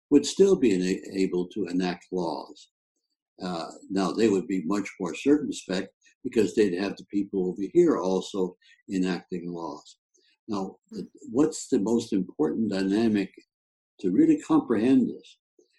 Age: 60-79